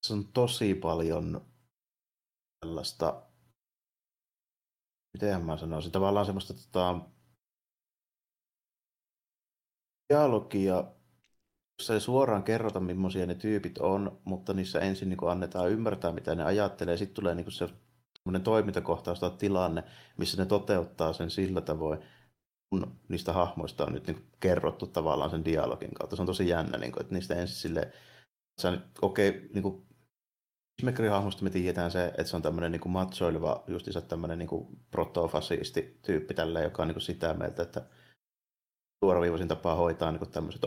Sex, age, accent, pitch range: male, 30-49, native, 85-100 Hz